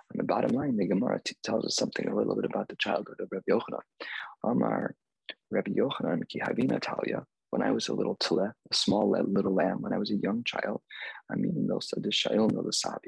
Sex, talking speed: male, 190 wpm